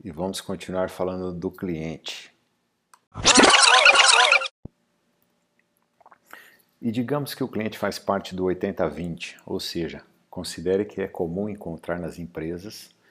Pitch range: 85-100 Hz